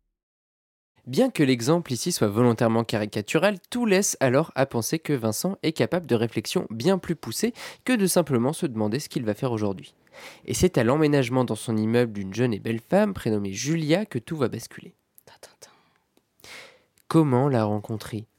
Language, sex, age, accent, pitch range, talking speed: French, male, 20-39, French, 115-165 Hz, 170 wpm